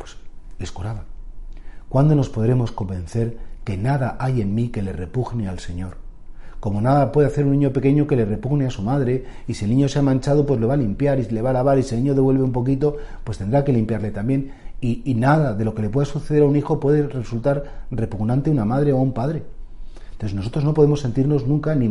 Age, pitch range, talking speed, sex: 40-59, 110-140 Hz, 235 wpm, male